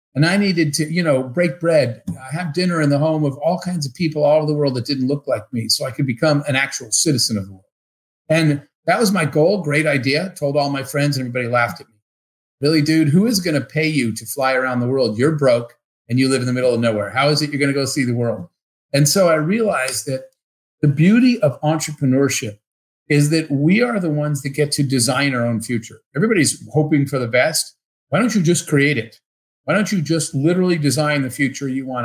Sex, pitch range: male, 130-165 Hz